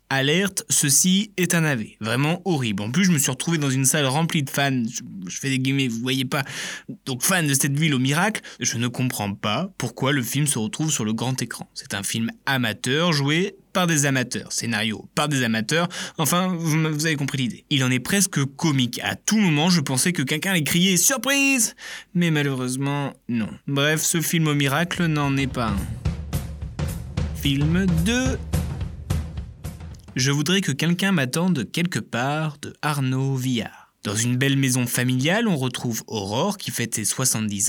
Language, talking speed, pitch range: French, 185 wpm, 120-165 Hz